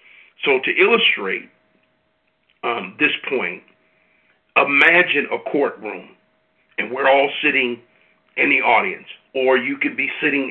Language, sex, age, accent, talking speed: English, male, 50-69, American, 120 wpm